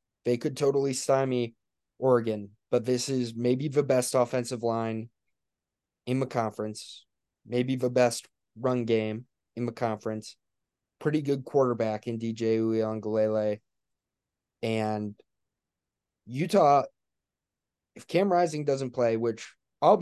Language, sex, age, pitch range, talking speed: English, male, 20-39, 115-150 Hz, 115 wpm